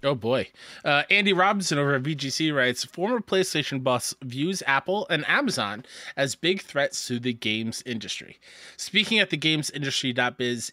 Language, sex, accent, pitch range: English, male, American, 125-195 Hz